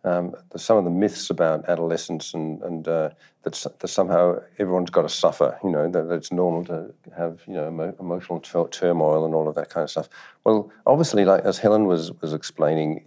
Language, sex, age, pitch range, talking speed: English, male, 50-69, 80-95 Hz, 200 wpm